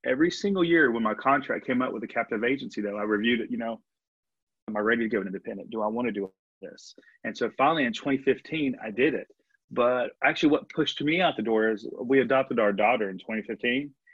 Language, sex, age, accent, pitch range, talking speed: English, male, 30-49, American, 115-165 Hz, 225 wpm